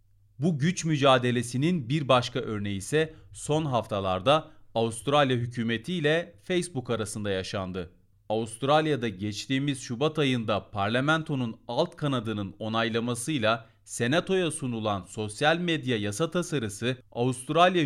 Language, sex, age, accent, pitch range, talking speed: Turkish, male, 40-59, native, 110-155 Hz, 95 wpm